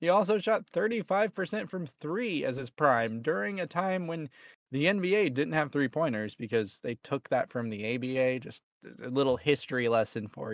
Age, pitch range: 20-39, 110-135 Hz